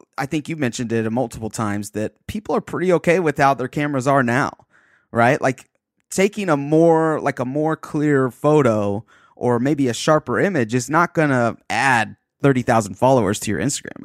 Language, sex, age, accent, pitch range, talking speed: English, male, 30-49, American, 115-150 Hz, 185 wpm